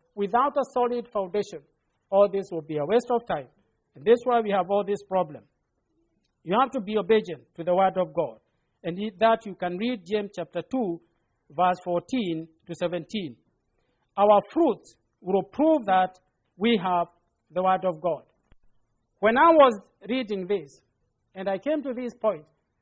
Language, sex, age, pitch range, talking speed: English, male, 50-69, 175-240 Hz, 170 wpm